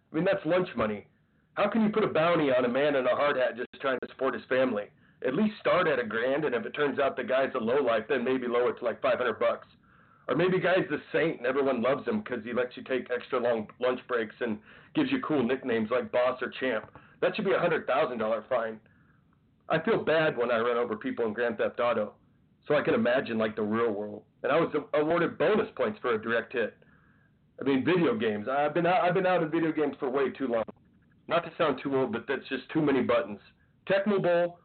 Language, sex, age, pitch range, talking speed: English, male, 40-59, 125-180 Hz, 240 wpm